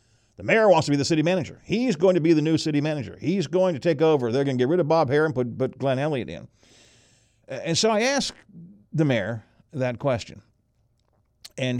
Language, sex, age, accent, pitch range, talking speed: English, male, 50-69, American, 115-150 Hz, 220 wpm